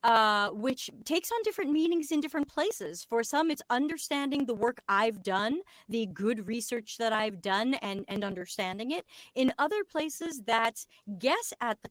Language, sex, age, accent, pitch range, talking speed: English, female, 40-59, American, 200-280 Hz, 170 wpm